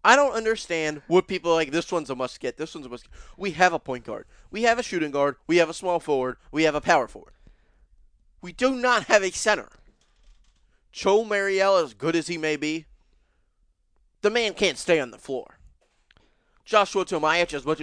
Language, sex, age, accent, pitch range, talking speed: English, male, 30-49, American, 130-185 Hz, 200 wpm